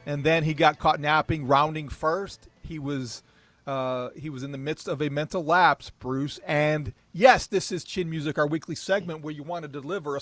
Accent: American